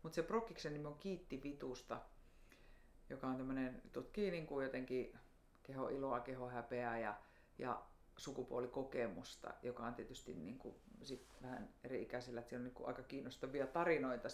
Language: Finnish